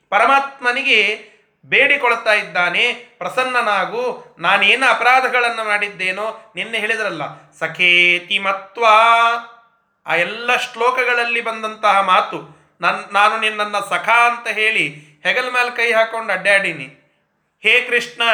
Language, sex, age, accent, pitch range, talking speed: Kannada, male, 30-49, native, 190-250 Hz, 95 wpm